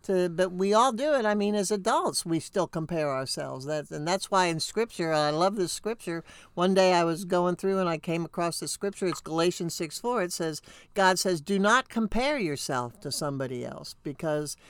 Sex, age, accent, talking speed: male, 60-79, American, 210 wpm